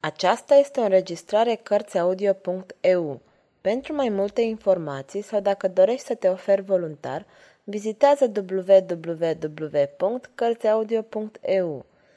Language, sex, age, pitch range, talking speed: Romanian, female, 20-39, 170-225 Hz, 90 wpm